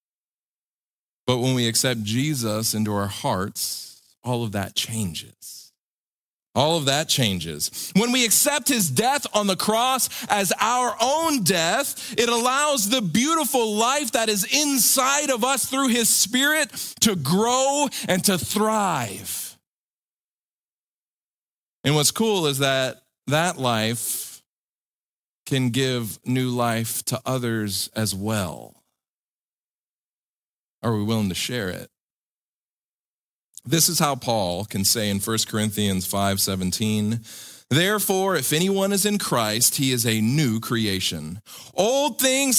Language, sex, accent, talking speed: English, male, American, 130 wpm